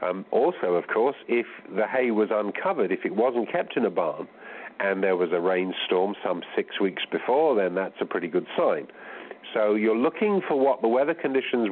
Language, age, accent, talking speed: English, 50-69, British, 200 wpm